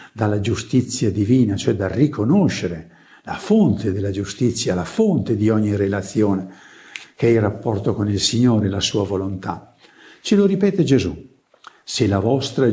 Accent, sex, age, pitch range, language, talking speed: native, male, 60-79, 100-130 Hz, Italian, 150 wpm